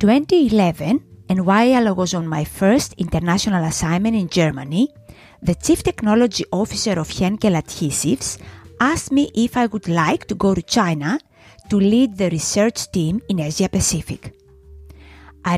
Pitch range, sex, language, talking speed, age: 160-225 Hz, female, English, 145 wpm, 30-49